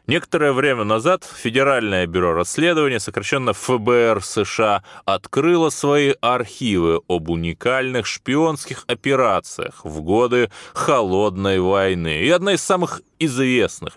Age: 20-39